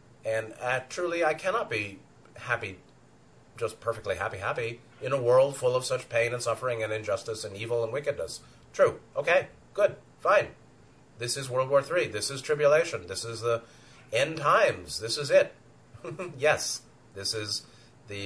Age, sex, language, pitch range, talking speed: 30-49, male, English, 110-130 Hz, 165 wpm